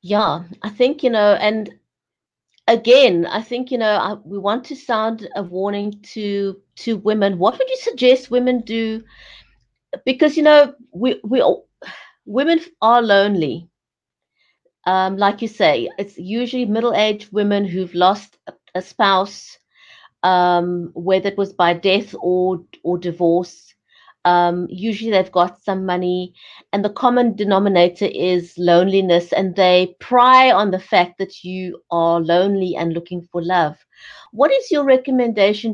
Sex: female